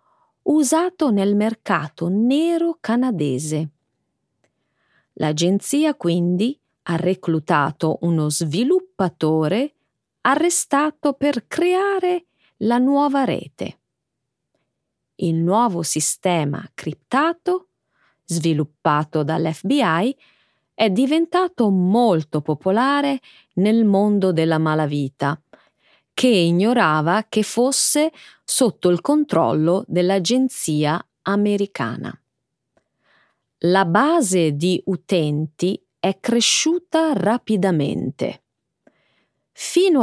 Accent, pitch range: native, 165-260 Hz